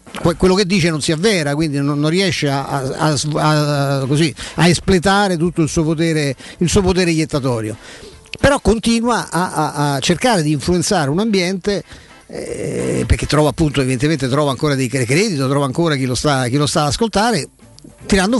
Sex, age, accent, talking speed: male, 50-69, native, 175 wpm